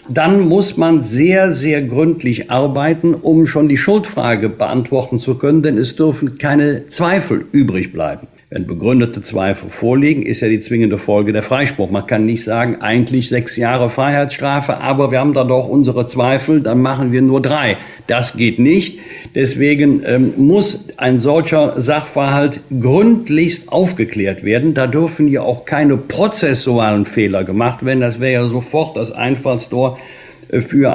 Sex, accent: male, German